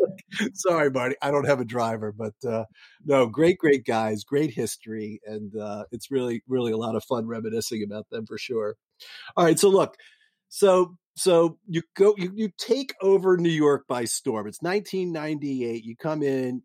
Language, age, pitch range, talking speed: English, 50-69, 115-160 Hz, 185 wpm